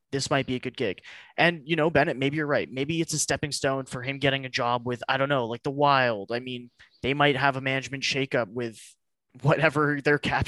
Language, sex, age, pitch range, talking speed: English, male, 20-39, 130-160 Hz, 240 wpm